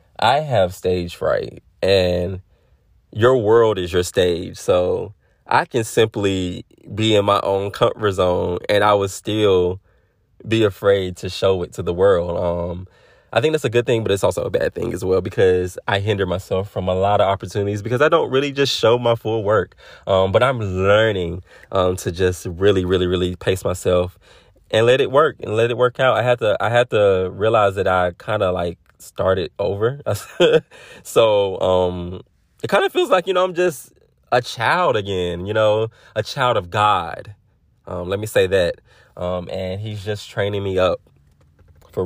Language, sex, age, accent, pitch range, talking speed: English, male, 20-39, American, 90-115 Hz, 185 wpm